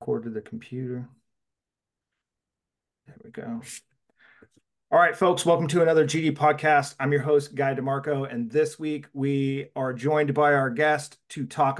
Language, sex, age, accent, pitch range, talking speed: English, male, 30-49, American, 140-155 Hz, 155 wpm